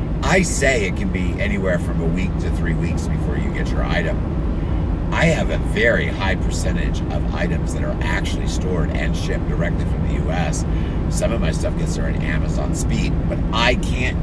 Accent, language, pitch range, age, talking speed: American, English, 80-85 Hz, 50-69, 200 wpm